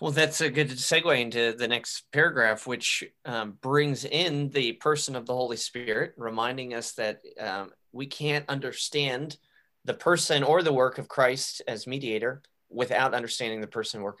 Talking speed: 170 wpm